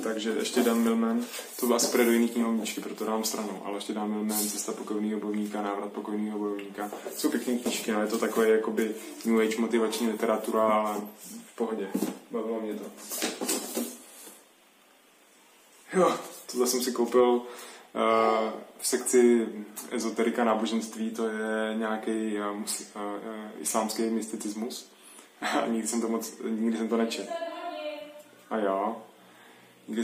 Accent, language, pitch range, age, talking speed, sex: native, Czech, 105-115 Hz, 20-39, 130 wpm, male